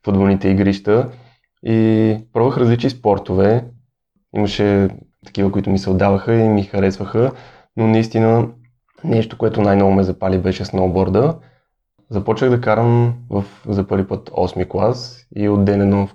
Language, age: Bulgarian, 20-39